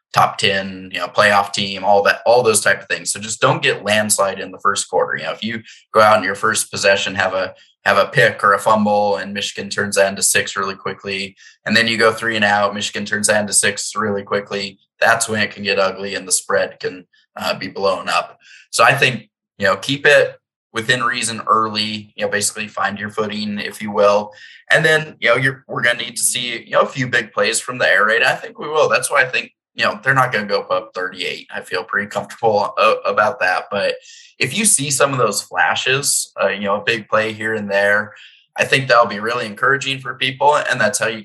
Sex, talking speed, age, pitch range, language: male, 245 wpm, 20-39, 100-130 Hz, English